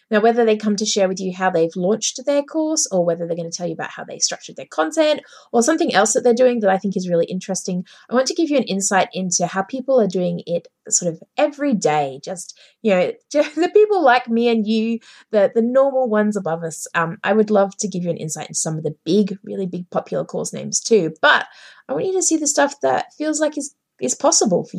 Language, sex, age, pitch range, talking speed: English, female, 20-39, 185-260 Hz, 255 wpm